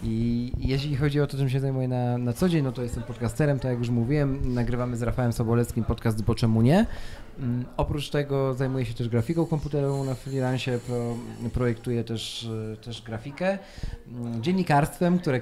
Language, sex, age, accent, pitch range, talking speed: Polish, male, 30-49, native, 115-150 Hz, 180 wpm